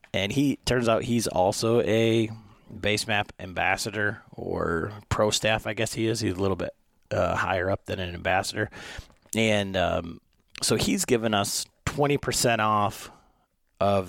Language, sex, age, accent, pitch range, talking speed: English, male, 30-49, American, 95-110 Hz, 155 wpm